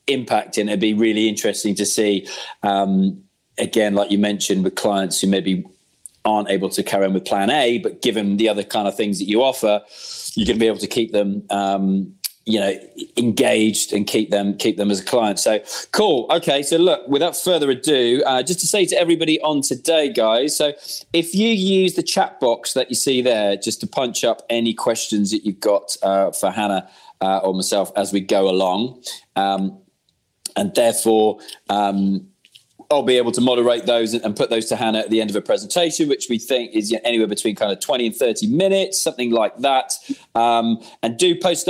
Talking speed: 205 wpm